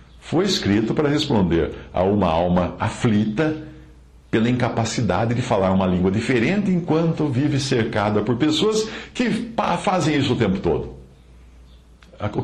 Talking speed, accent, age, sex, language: 130 wpm, Brazilian, 60-79, male, English